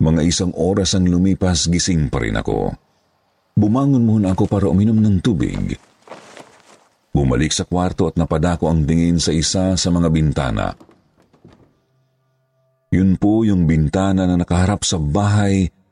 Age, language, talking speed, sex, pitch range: 50-69, Filipino, 135 wpm, male, 80-130 Hz